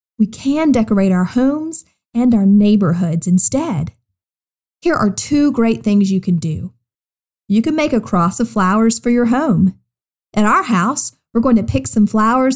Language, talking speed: English, 170 wpm